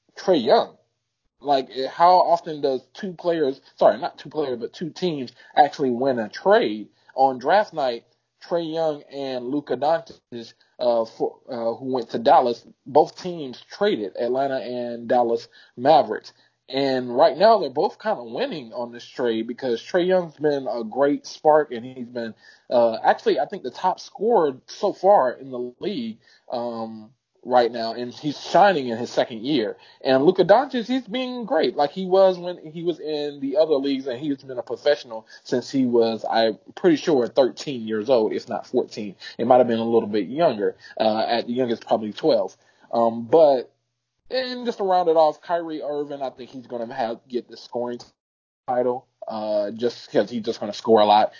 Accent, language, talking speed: American, English, 185 wpm